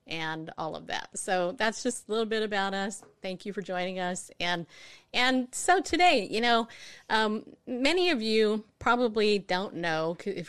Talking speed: 175 wpm